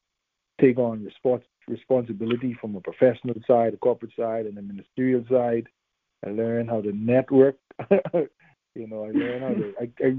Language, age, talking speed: English, 50-69, 160 wpm